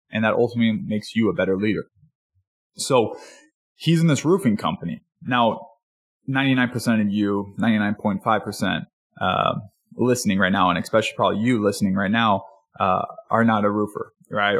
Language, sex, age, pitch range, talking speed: English, male, 20-39, 105-140 Hz, 150 wpm